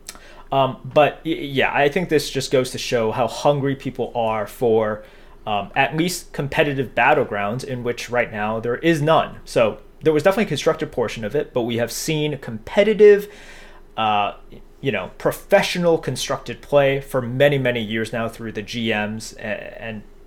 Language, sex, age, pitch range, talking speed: English, male, 30-49, 120-150 Hz, 165 wpm